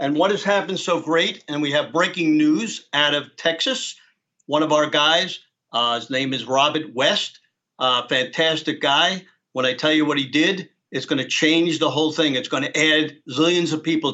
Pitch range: 150-190 Hz